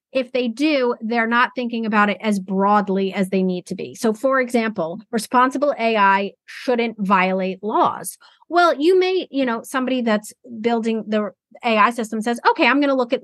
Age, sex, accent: 30-49, female, American